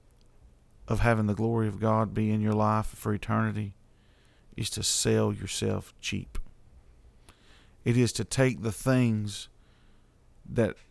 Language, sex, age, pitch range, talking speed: English, male, 40-59, 100-115 Hz, 130 wpm